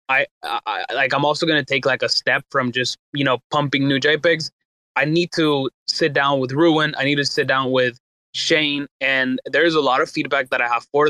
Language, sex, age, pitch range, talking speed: English, male, 20-39, 130-155 Hz, 225 wpm